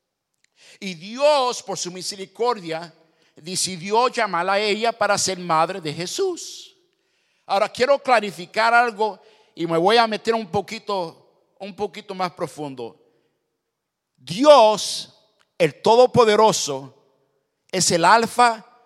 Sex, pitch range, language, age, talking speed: male, 160-235 Hz, English, 50-69, 110 wpm